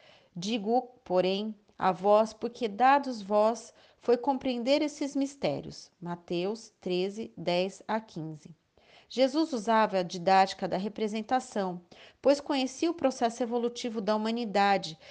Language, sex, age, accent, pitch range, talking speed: Portuguese, female, 30-49, Brazilian, 190-260 Hz, 115 wpm